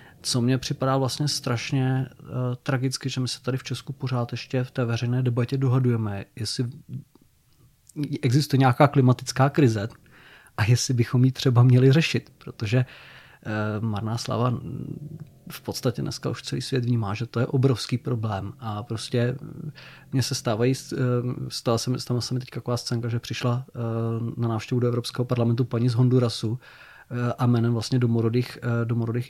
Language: Czech